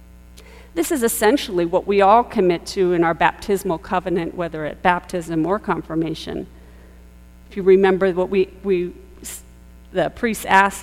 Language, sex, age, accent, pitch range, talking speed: English, female, 50-69, American, 160-215 Hz, 145 wpm